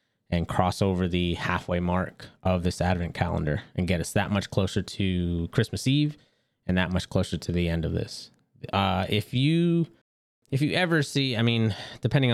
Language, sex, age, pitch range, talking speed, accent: English, male, 30-49, 95-120 Hz, 185 wpm, American